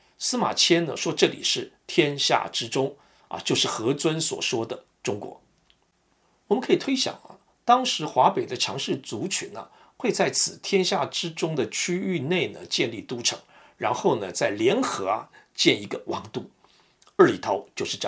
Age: 50-69